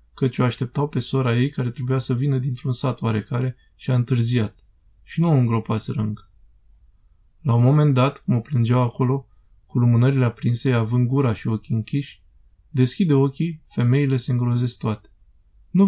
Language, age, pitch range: Romanian, 20-39, 110-140 Hz